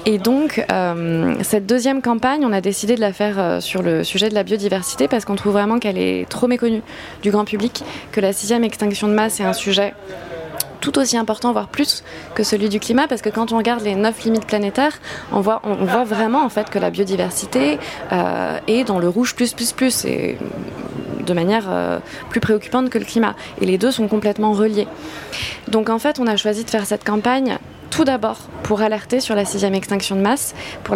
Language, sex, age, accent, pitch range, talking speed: French, female, 20-39, French, 200-240 Hz, 215 wpm